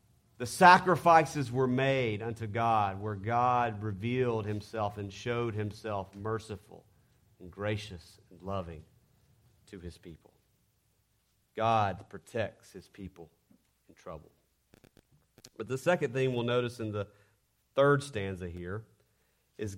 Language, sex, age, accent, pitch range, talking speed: English, male, 40-59, American, 105-135 Hz, 120 wpm